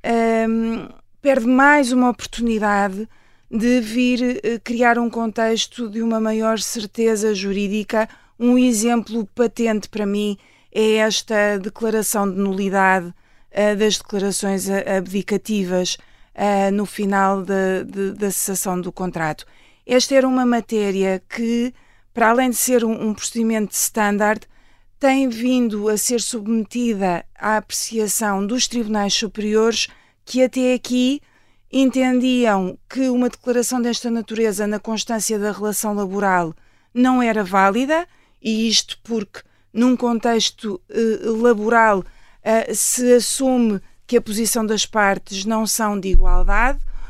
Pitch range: 200-235 Hz